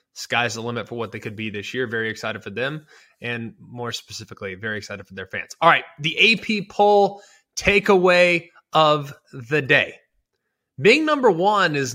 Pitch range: 120-155 Hz